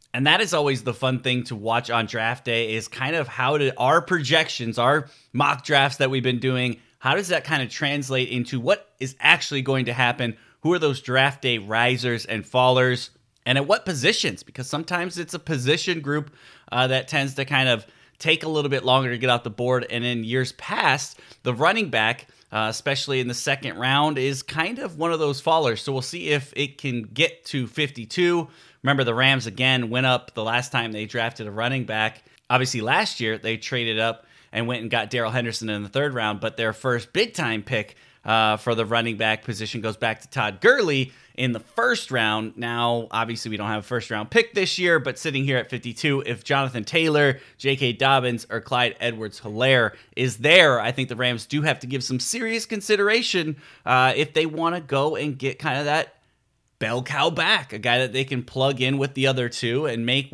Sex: male